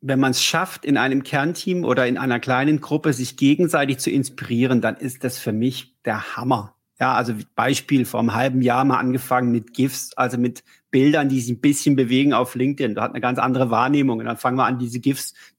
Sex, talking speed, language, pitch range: male, 225 wpm, German, 125-145 Hz